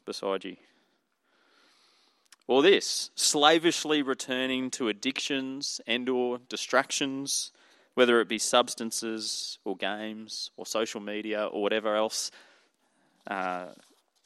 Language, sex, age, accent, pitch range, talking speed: English, male, 30-49, Australian, 100-130 Hz, 95 wpm